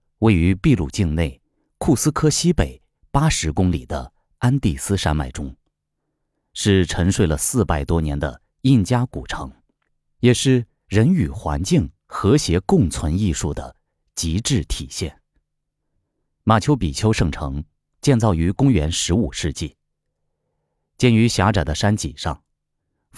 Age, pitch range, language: 30-49, 75-115 Hz, Chinese